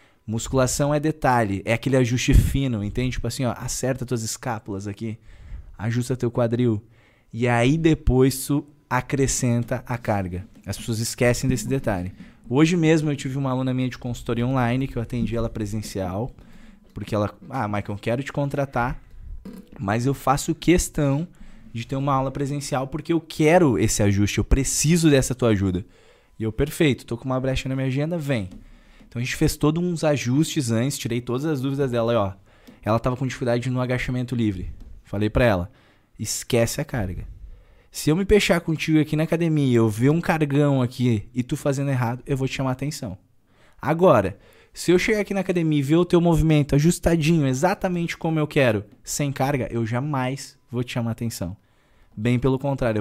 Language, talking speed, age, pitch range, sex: Portuguese, 185 wpm, 20-39, 115-145 Hz, male